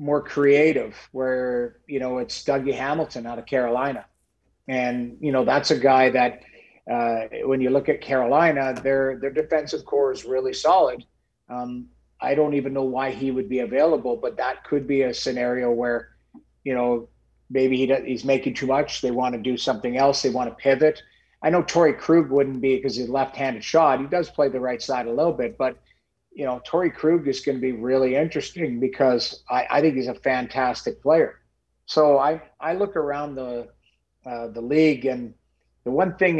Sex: male